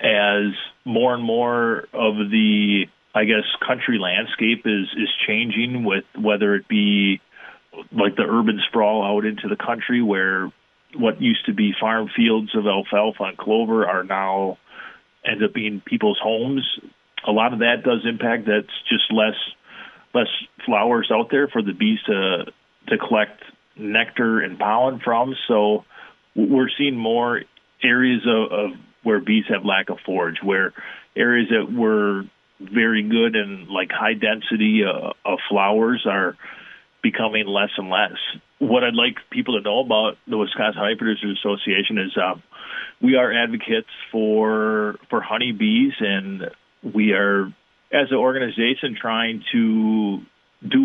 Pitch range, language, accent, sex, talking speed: 105-130 Hz, English, American, male, 150 wpm